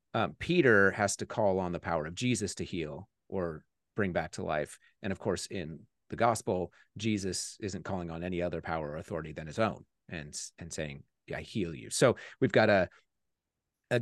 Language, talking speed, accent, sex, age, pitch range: English, 195 wpm, American, male, 30-49, 95-115 Hz